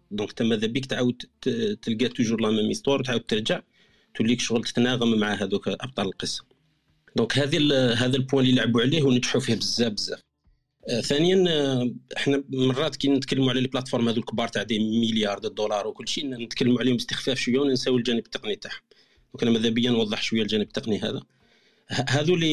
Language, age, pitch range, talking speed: Arabic, 40-59, 115-140 Hz, 160 wpm